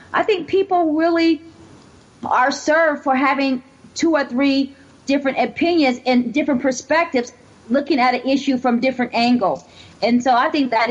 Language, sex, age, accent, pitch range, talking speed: English, female, 40-59, American, 215-270 Hz, 155 wpm